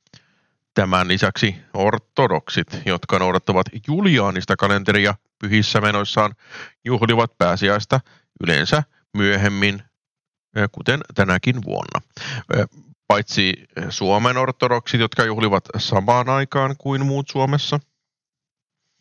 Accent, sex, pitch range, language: native, male, 100-130 Hz, Finnish